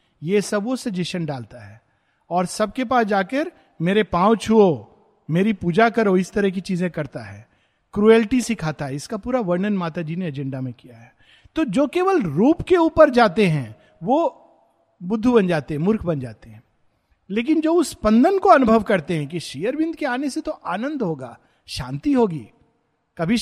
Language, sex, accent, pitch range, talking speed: Hindi, male, native, 150-225 Hz, 180 wpm